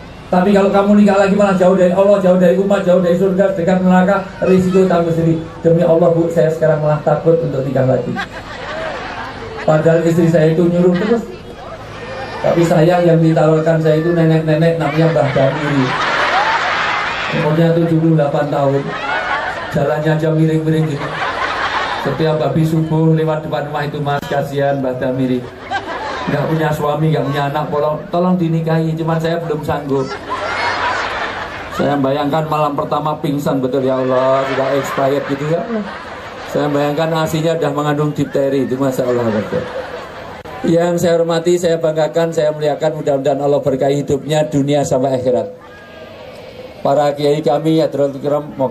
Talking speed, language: 145 wpm, Indonesian